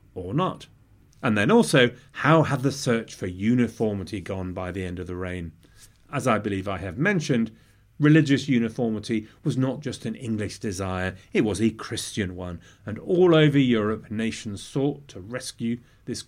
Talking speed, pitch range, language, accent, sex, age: 170 wpm, 100-155 Hz, English, British, male, 30-49